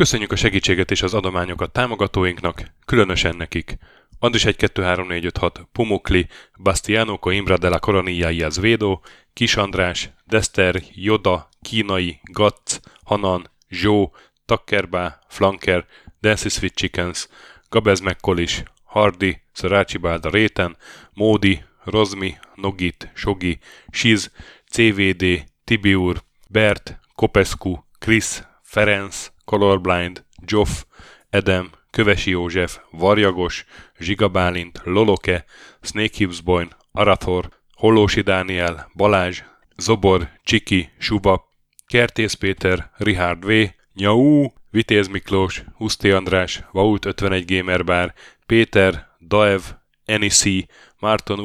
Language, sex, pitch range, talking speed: Hungarian, male, 90-105 Hz, 90 wpm